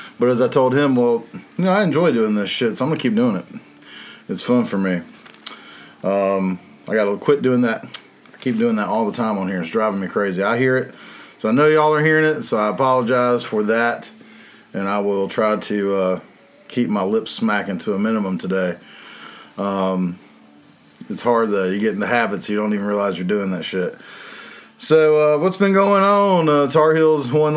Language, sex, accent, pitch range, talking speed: English, male, American, 100-150 Hz, 215 wpm